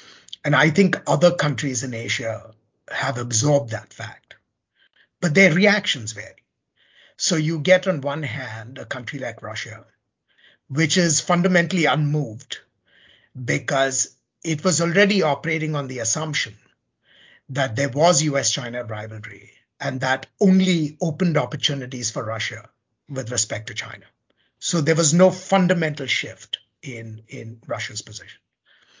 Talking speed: 130 wpm